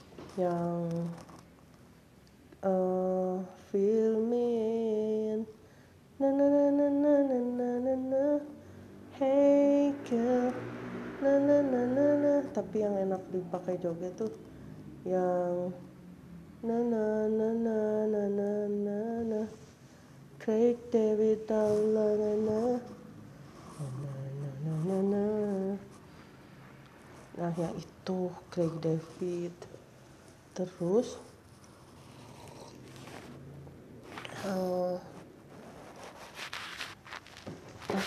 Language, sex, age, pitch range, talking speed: Indonesian, female, 20-39, 185-225 Hz, 70 wpm